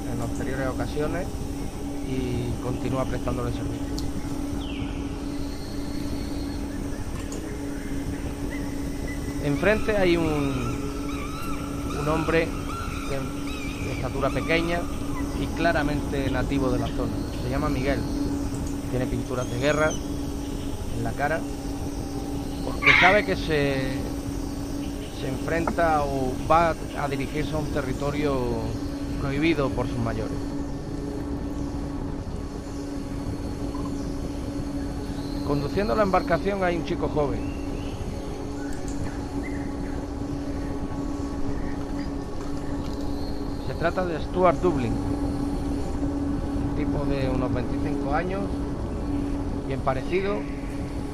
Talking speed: 80 wpm